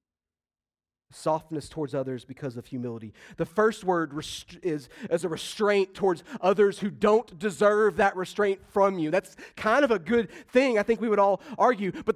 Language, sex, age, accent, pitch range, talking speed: English, male, 30-49, American, 150-205 Hz, 175 wpm